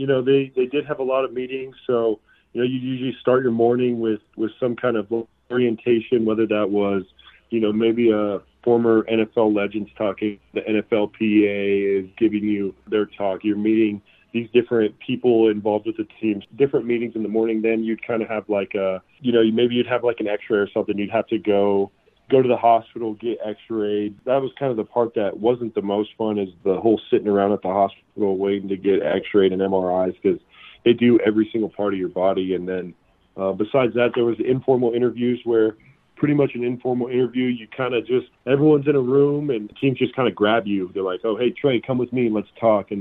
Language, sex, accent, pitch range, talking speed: English, male, American, 100-120 Hz, 225 wpm